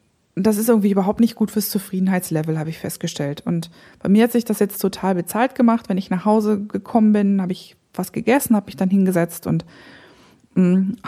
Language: German